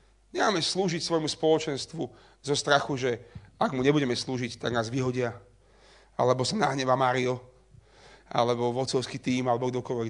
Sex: male